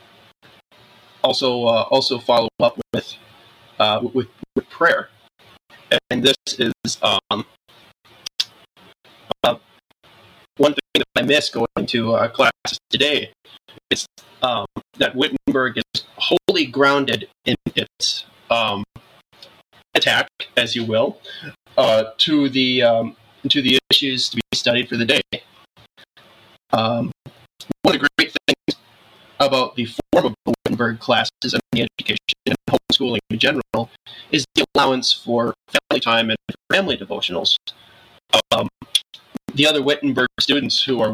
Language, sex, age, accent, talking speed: English, male, 30-49, American, 125 wpm